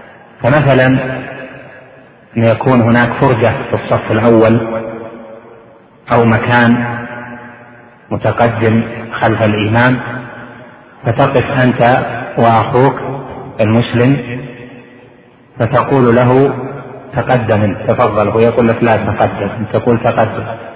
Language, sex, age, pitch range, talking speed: Arabic, male, 40-59, 115-130 Hz, 75 wpm